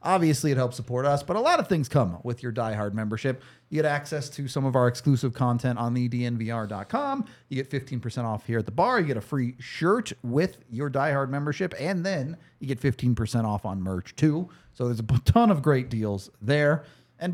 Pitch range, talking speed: 120-165 Hz, 215 wpm